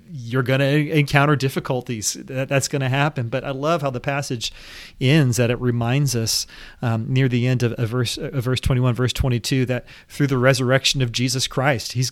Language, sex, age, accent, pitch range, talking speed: English, male, 30-49, American, 125-145 Hz, 190 wpm